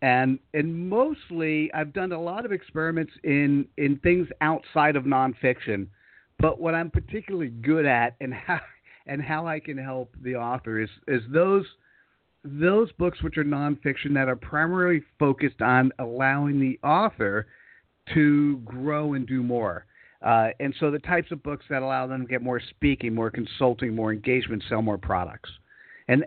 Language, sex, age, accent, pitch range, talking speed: English, male, 50-69, American, 125-160 Hz, 165 wpm